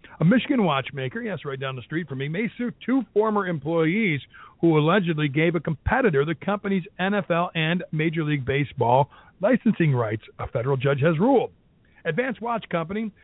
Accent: American